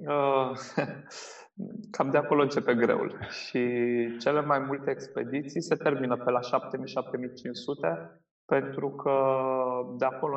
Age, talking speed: 20-39, 110 wpm